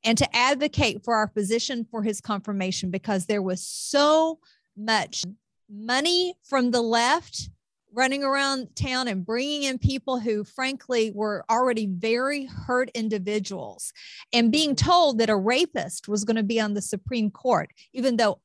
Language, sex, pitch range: English, female, 210-270 Hz